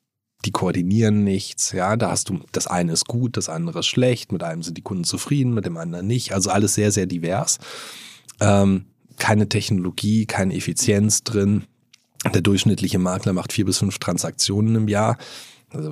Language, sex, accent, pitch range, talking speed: German, male, German, 95-120 Hz, 175 wpm